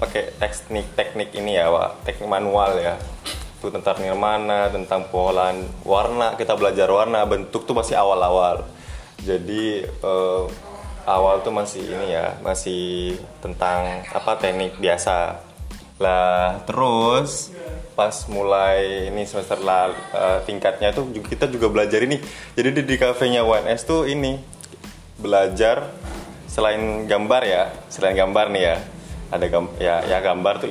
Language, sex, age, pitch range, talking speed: Indonesian, male, 20-39, 90-110 Hz, 130 wpm